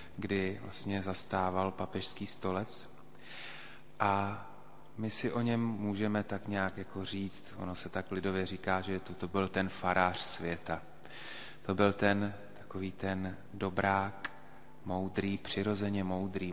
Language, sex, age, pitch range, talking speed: Slovak, male, 30-49, 95-100 Hz, 130 wpm